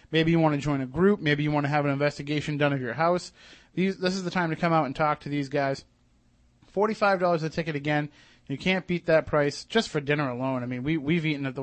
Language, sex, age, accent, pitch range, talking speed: English, male, 30-49, American, 140-175 Hz, 270 wpm